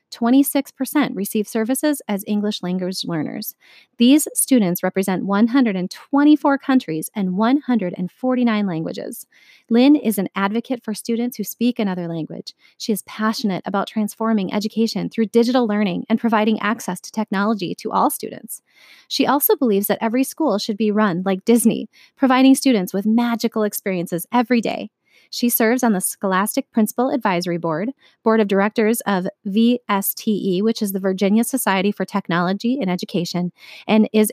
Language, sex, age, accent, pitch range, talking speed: English, female, 30-49, American, 195-240 Hz, 145 wpm